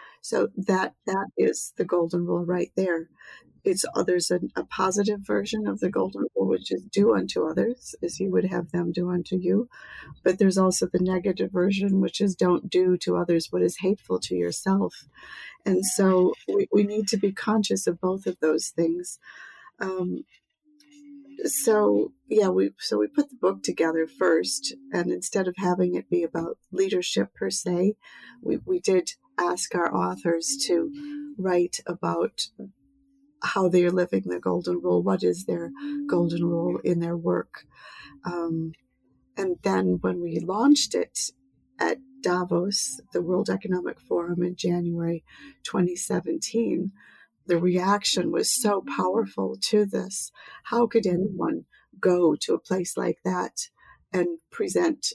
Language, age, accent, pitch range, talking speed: English, 50-69, American, 170-225 Hz, 155 wpm